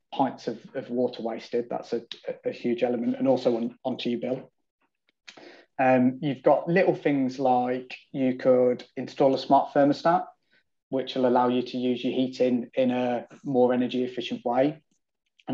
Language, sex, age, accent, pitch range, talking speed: English, male, 20-39, British, 125-150 Hz, 160 wpm